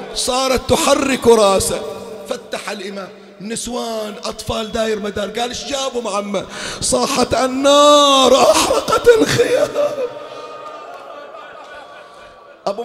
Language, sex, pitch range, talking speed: Arabic, male, 225-280 Hz, 85 wpm